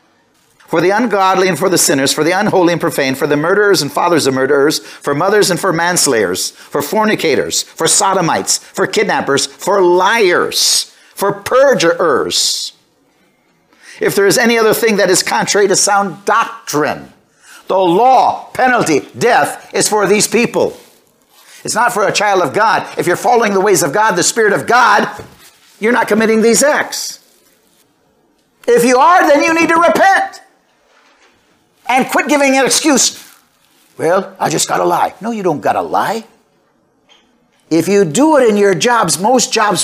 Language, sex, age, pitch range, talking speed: English, male, 50-69, 170-245 Hz, 170 wpm